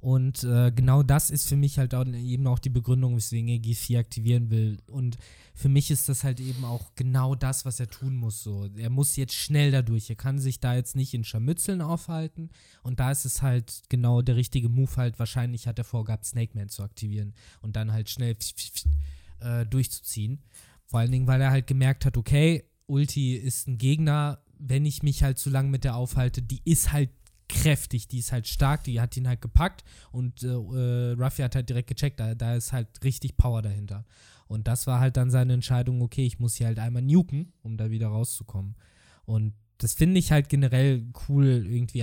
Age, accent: 20-39, German